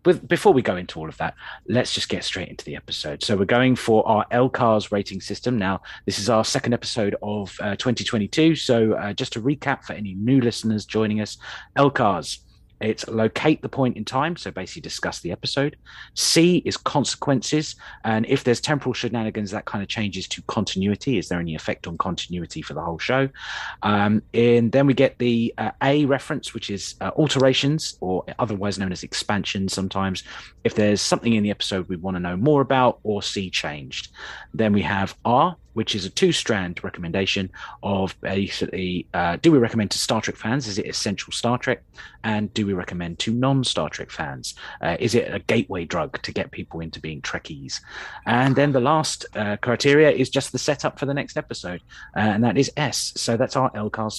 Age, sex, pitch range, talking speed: 30-49, male, 100-130 Hz, 200 wpm